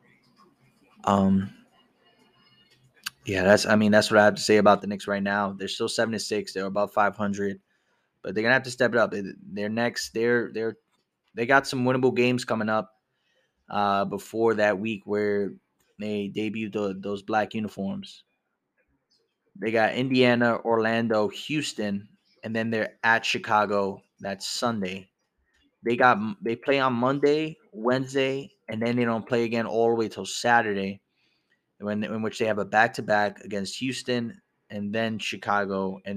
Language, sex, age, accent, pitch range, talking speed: English, male, 20-39, American, 100-120 Hz, 165 wpm